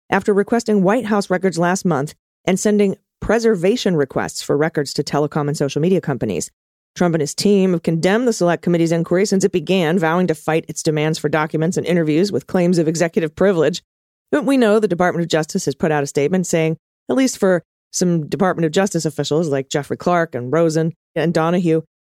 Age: 30-49